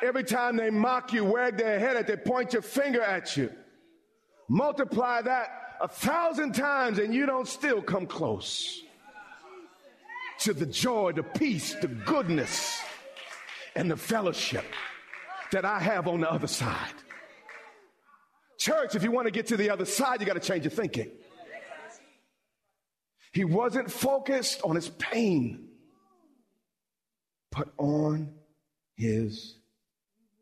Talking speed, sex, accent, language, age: 135 wpm, male, American, English, 40-59